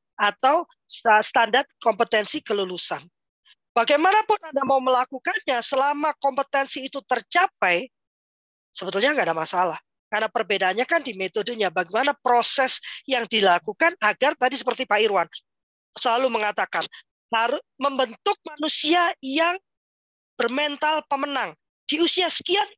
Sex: female